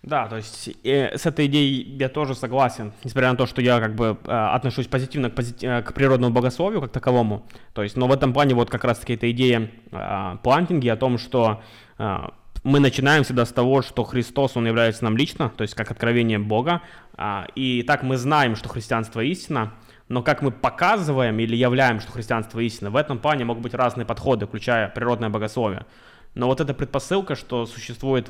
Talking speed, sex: 195 wpm, male